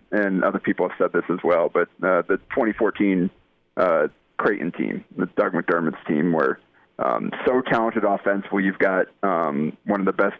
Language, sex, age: English, male, 40-59